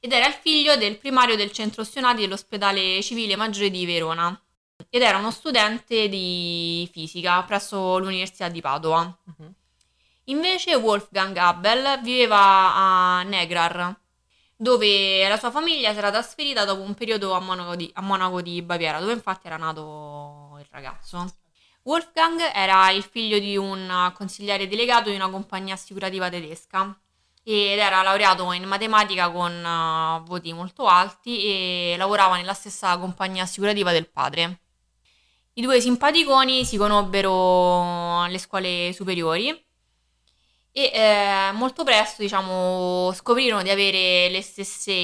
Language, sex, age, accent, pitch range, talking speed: Italian, female, 20-39, native, 180-215 Hz, 130 wpm